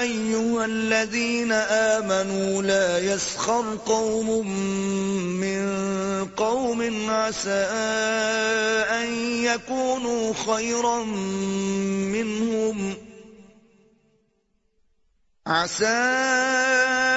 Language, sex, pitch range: Urdu, male, 195-235 Hz